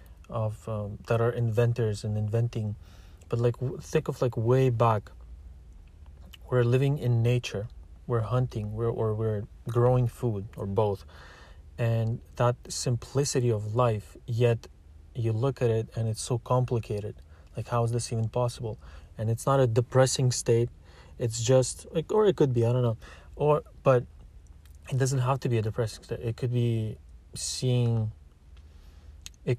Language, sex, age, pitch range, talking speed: English, male, 30-49, 95-125 Hz, 160 wpm